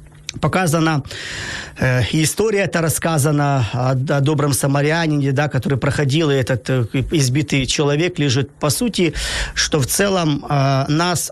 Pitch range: 140-175 Hz